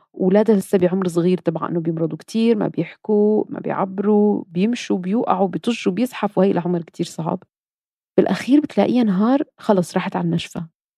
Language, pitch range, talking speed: Arabic, 170-215 Hz, 150 wpm